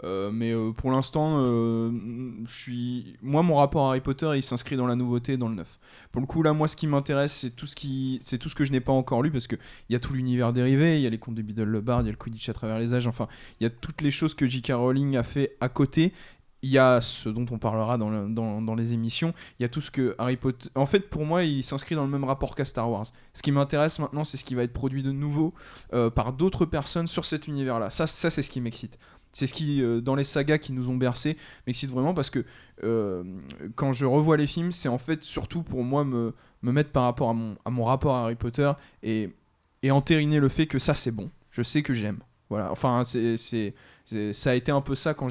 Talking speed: 270 wpm